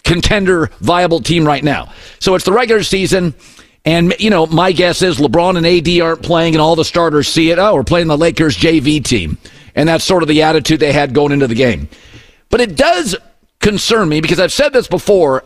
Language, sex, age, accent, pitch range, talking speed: English, male, 50-69, American, 135-185 Hz, 215 wpm